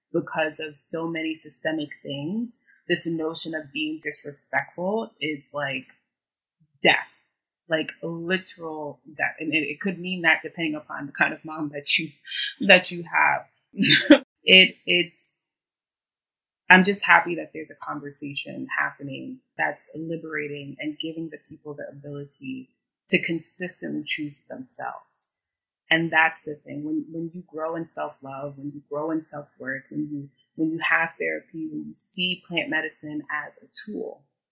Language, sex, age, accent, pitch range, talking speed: English, female, 20-39, American, 150-170 Hz, 150 wpm